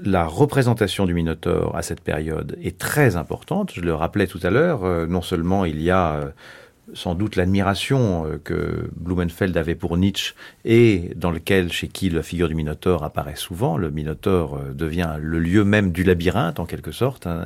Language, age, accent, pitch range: French, 40-59, French, 85-100 Hz